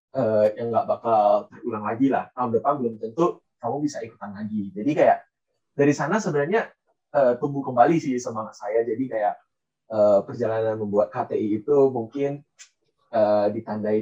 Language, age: Indonesian, 20-39